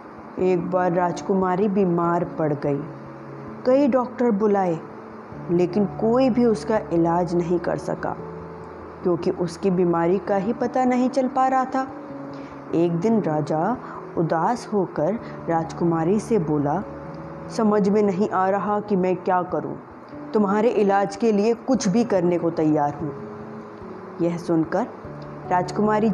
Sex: female